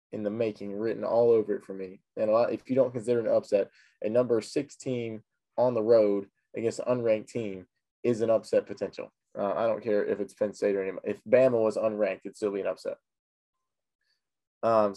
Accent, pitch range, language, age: American, 100-115 Hz, English, 20-39